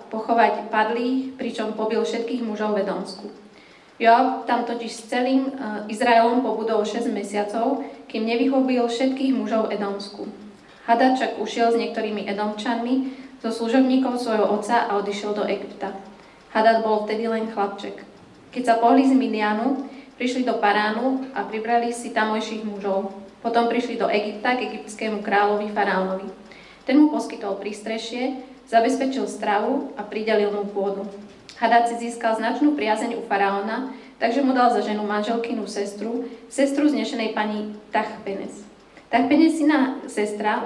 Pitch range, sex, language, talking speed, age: 210-240 Hz, female, Slovak, 135 wpm, 20-39